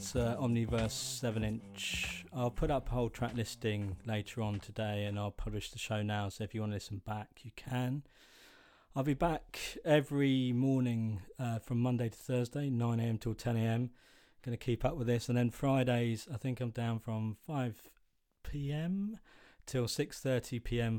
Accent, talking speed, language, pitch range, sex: British, 170 wpm, English, 105-125 Hz, male